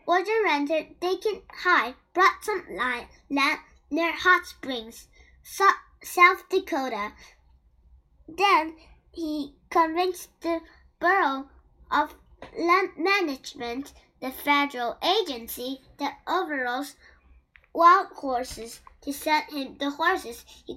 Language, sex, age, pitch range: Chinese, male, 10-29, 260-360 Hz